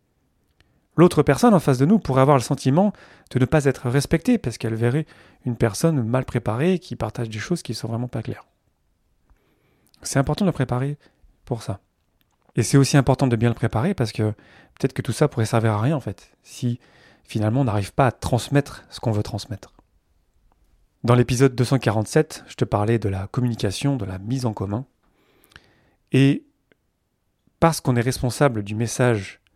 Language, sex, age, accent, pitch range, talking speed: French, male, 30-49, French, 110-145 Hz, 185 wpm